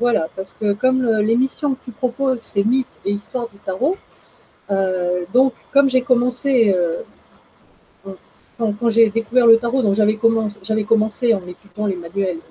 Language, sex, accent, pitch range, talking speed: French, female, French, 185-245 Hz, 180 wpm